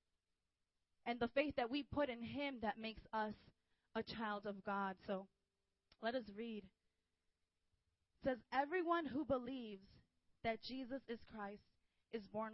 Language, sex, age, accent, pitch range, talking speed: English, female, 20-39, American, 195-265 Hz, 145 wpm